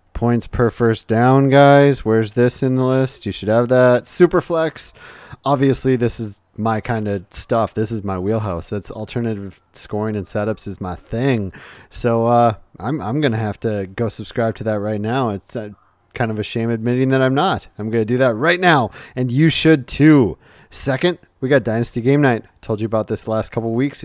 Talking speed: 200 wpm